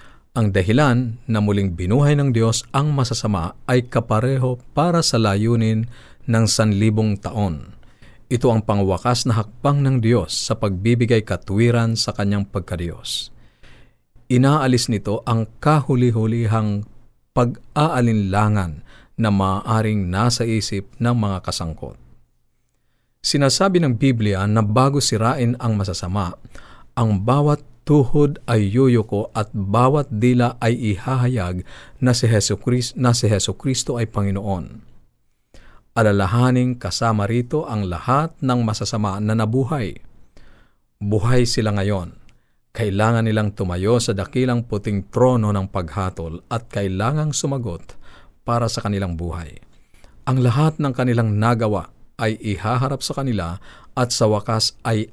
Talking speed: 120 wpm